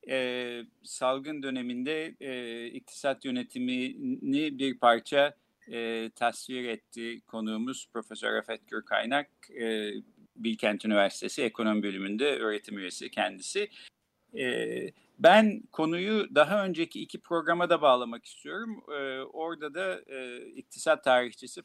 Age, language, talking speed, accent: 50-69, Turkish, 110 wpm, native